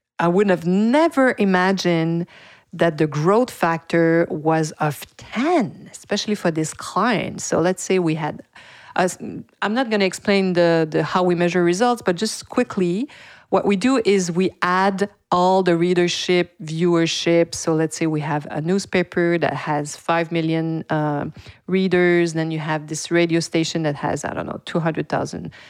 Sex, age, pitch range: female, 40-59, 155-190 Hz